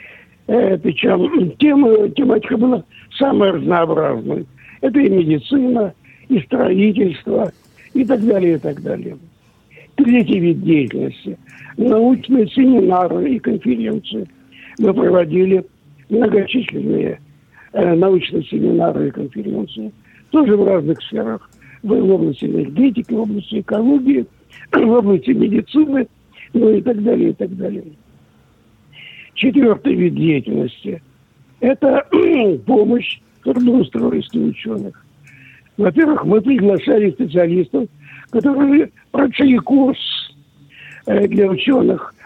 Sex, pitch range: male, 180-255 Hz